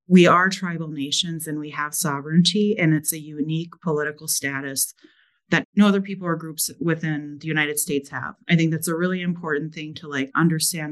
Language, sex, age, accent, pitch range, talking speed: English, female, 30-49, American, 150-175 Hz, 190 wpm